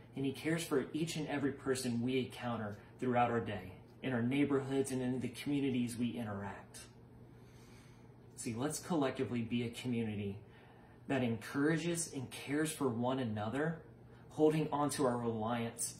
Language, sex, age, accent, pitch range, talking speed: English, male, 30-49, American, 115-140 Hz, 150 wpm